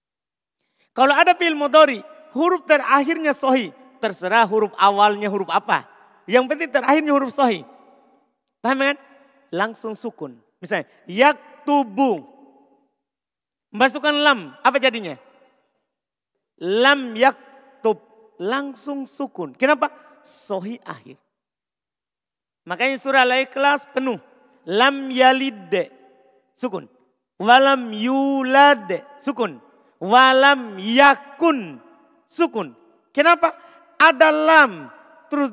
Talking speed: 90 wpm